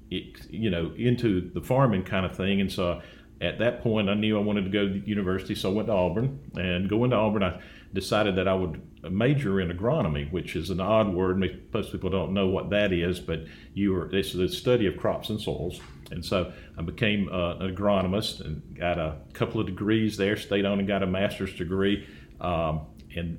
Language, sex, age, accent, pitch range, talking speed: English, male, 50-69, American, 90-110 Hz, 215 wpm